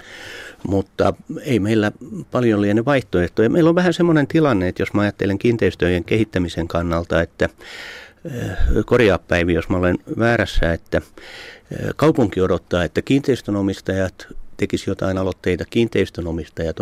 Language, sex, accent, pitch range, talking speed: Finnish, male, native, 90-110 Hz, 120 wpm